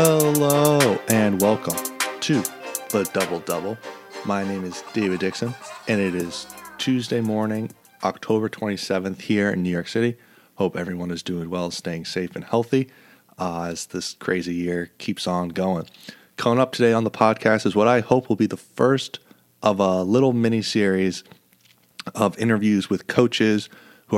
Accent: American